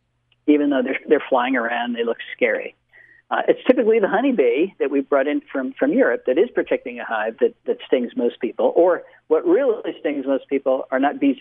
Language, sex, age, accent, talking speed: English, male, 50-69, American, 210 wpm